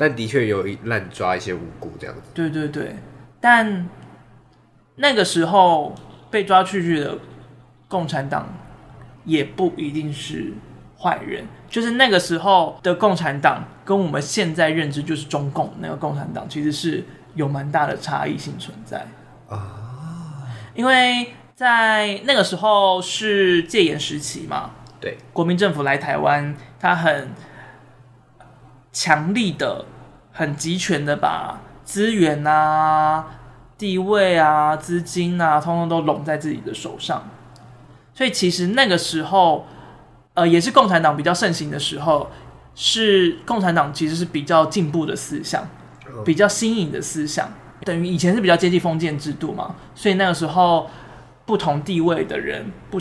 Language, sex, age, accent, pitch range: Chinese, male, 20-39, native, 145-185 Hz